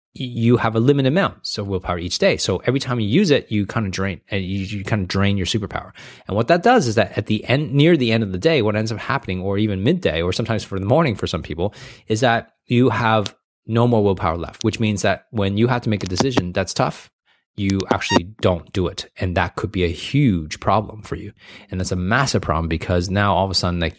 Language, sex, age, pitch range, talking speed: English, male, 20-39, 90-115 Hz, 255 wpm